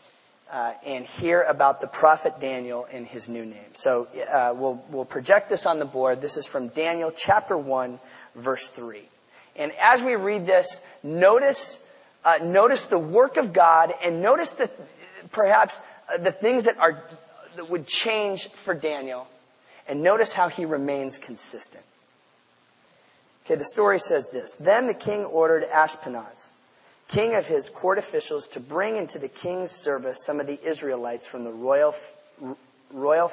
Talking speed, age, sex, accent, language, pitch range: 160 wpm, 30-49, male, American, English, 135-205 Hz